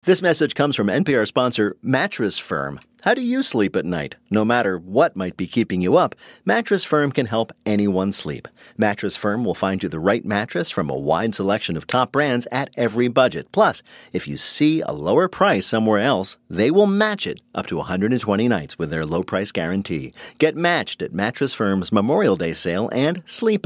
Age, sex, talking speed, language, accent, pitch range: 50-69, male, 200 wpm, English, American, 95-135 Hz